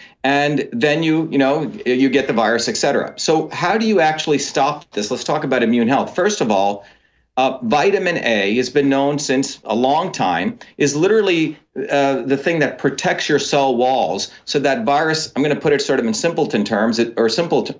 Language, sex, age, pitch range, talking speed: English, male, 40-59, 130-155 Hz, 205 wpm